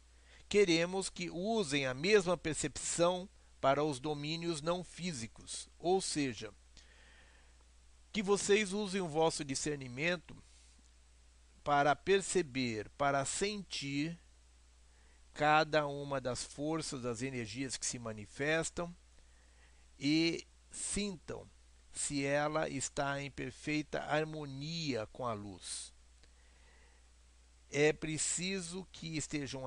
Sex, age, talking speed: male, 60-79, 95 wpm